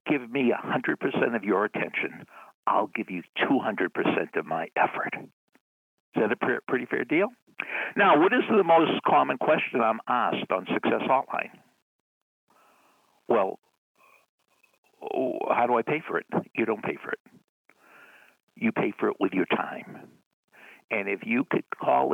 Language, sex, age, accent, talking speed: English, male, 60-79, American, 150 wpm